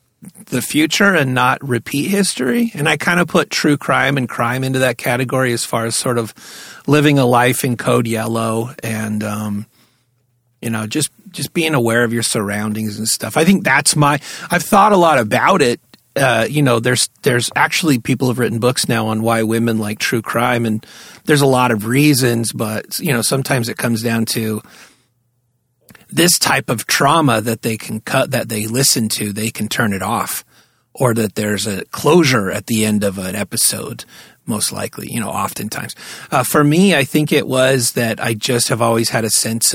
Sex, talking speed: male, 200 wpm